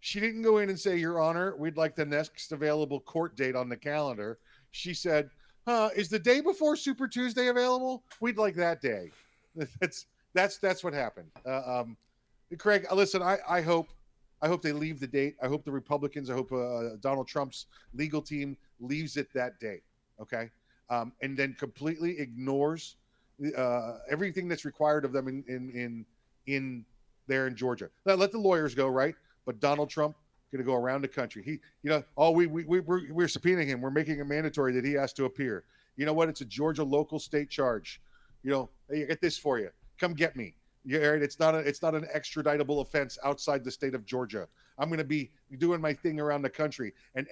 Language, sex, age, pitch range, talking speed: English, male, 40-59, 130-165 Hz, 205 wpm